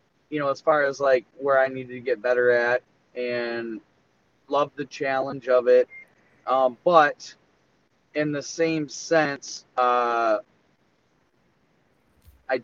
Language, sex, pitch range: English, male, 120-150 Hz